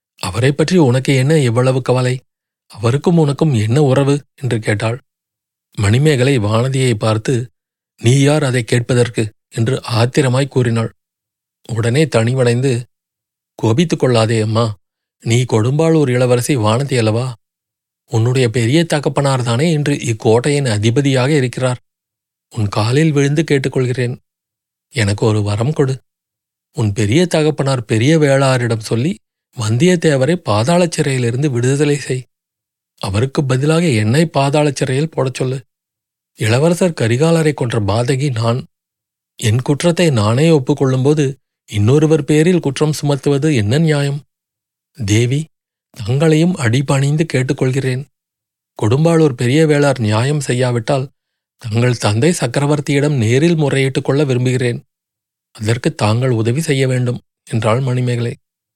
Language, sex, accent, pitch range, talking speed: Tamil, male, native, 115-150 Hz, 105 wpm